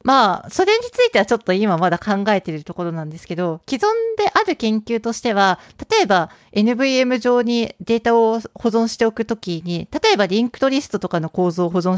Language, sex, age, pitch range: Japanese, female, 40-59, 175-245 Hz